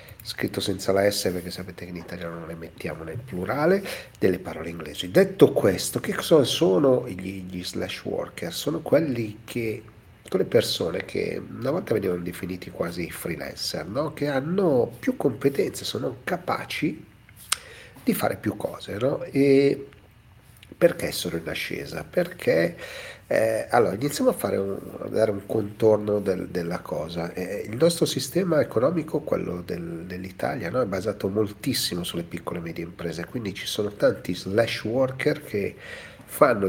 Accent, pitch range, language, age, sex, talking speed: native, 90-125 Hz, Italian, 50-69, male, 155 wpm